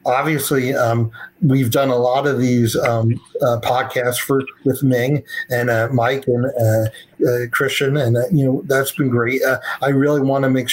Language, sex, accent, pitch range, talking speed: English, male, American, 120-145 Hz, 190 wpm